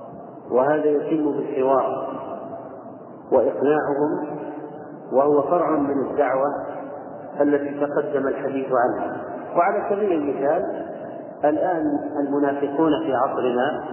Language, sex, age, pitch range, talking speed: Arabic, male, 40-59, 135-160 Hz, 80 wpm